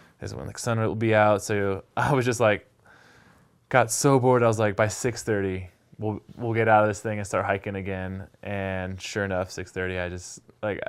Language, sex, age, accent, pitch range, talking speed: English, male, 20-39, American, 105-140 Hz, 215 wpm